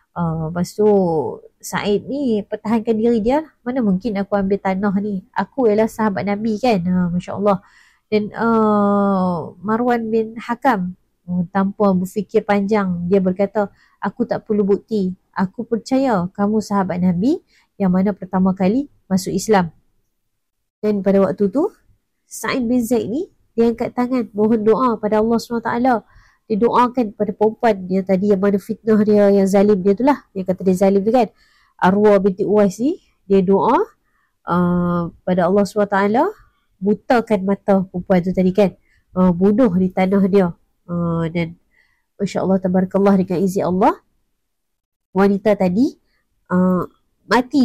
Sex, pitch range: female, 190-230 Hz